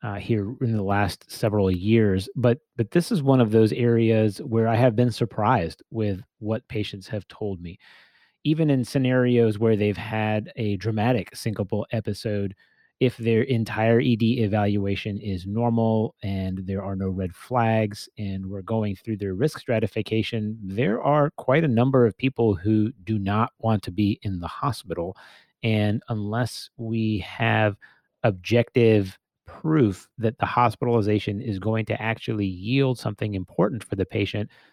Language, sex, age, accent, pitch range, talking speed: English, male, 30-49, American, 105-120 Hz, 155 wpm